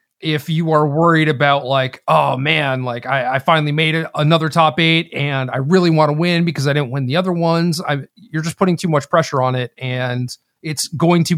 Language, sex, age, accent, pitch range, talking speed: English, male, 30-49, American, 135-165 Hz, 220 wpm